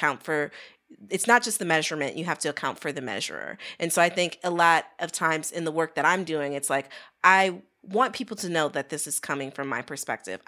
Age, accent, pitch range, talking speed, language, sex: 30-49, American, 150-180 Hz, 240 wpm, English, female